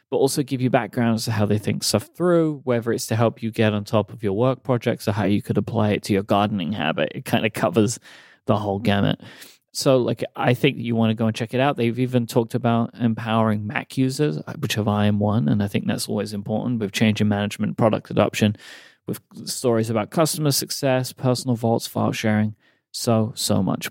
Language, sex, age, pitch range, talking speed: English, male, 30-49, 105-135 Hz, 225 wpm